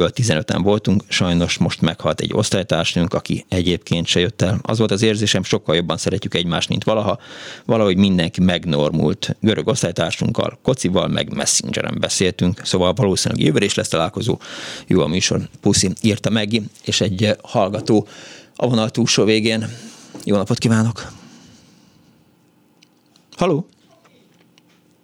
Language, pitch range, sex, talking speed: Hungarian, 85-110 Hz, male, 125 wpm